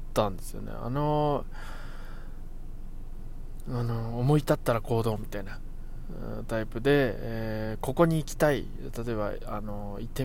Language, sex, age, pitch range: Japanese, male, 20-39, 110-130 Hz